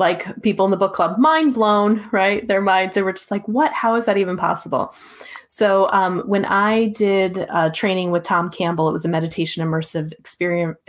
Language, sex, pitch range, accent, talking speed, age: English, female, 160-195 Hz, American, 205 wpm, 30-49